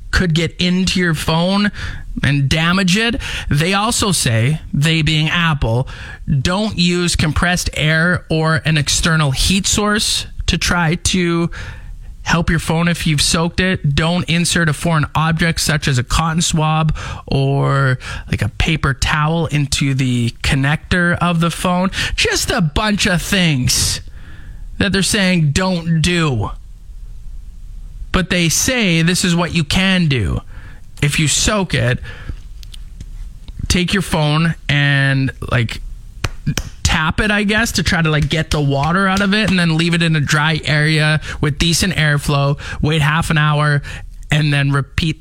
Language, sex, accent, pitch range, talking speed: English, male, American, 140-180 Hz, 150 wpm